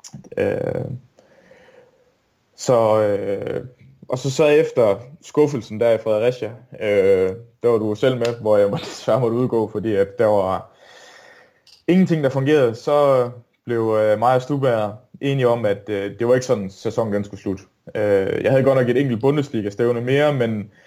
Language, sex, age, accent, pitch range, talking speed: Danish, male, 20-39, native, 110-130 Hz, 160 wpm